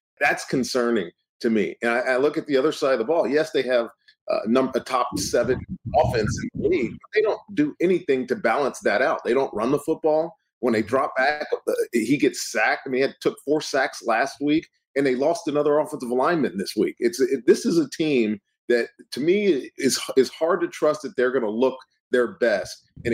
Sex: male